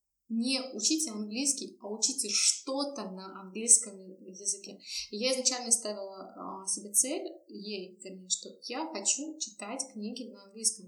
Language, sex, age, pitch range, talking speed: Russian, female, 20-39, 190-235 Hz, 125 wpm